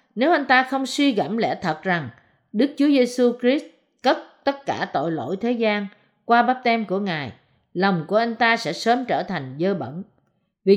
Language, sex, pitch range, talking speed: Vietnamese, female, 175-250 Hz, 200 wpm